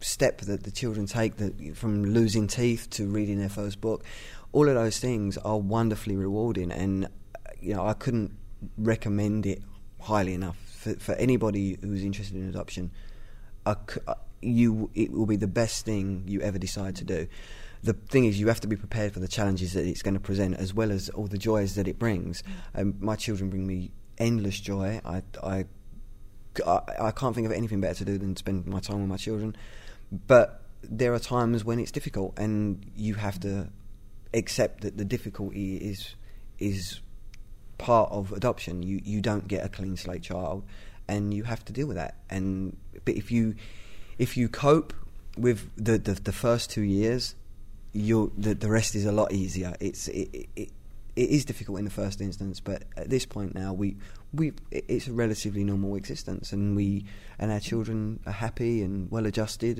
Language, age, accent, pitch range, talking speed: English, 20-39, British, 100-110 Hz, 190 wpm